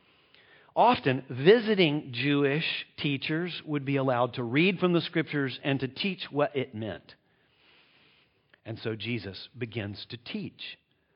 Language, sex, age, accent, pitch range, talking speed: English, male, 50-69, American, 135-185 Hz, 130 wpm